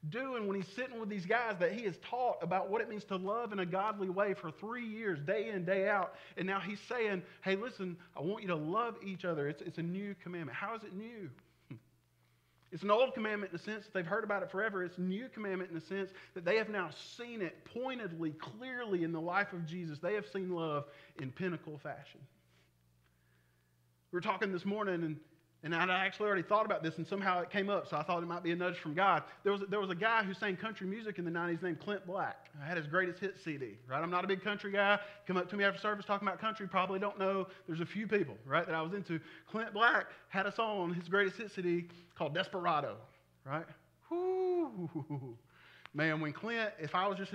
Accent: American